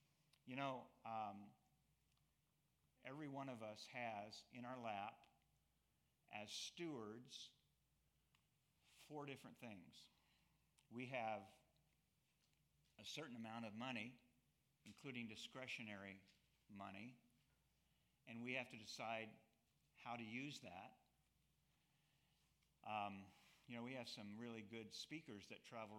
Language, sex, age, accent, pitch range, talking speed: English, male, 50-69, American, 110-135 Hz, 105 wpm